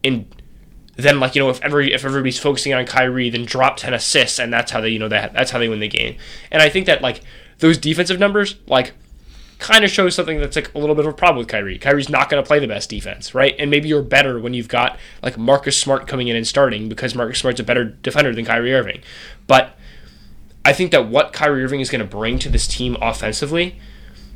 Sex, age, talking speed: male, 10-29, 240 wpm